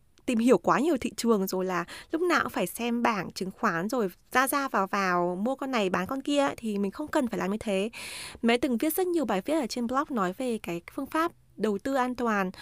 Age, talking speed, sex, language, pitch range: 20-39, 255 wpm, female, Vietnamese, 200-275 Hz